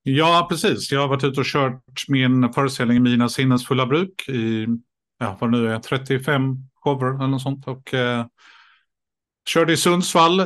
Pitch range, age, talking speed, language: 125-150 Hz, 50-69, 180 wpm, Swedish